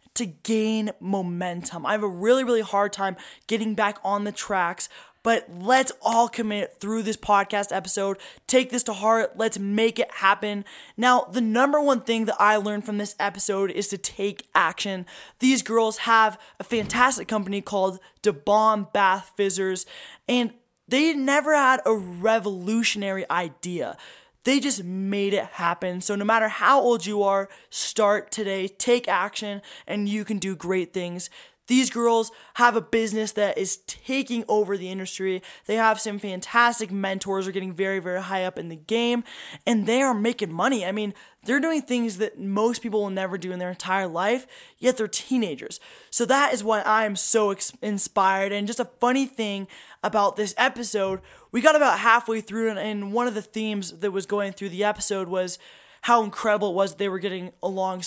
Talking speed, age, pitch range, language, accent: 180 wpm, 20-39, 195-230 Hz, English, American